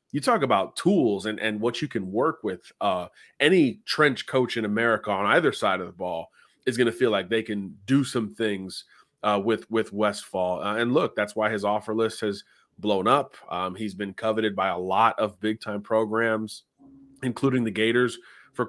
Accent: American